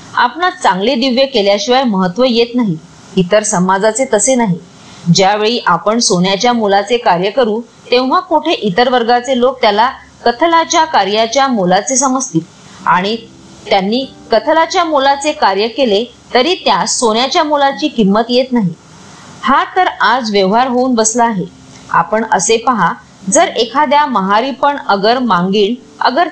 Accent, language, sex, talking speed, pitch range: native, Marathi, female, 90 wpm, 205-270 Hz